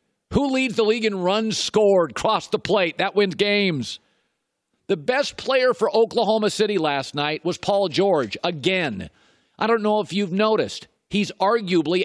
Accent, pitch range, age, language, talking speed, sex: American, 185-225 Hz, 50-69, English, 165 wpm, male